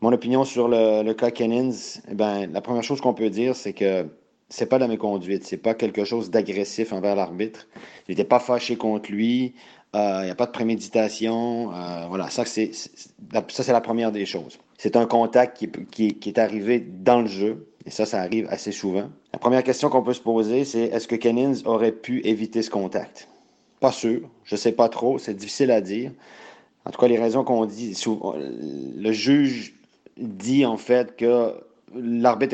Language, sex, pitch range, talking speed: French, male, 105-125 Hz, 205 wpm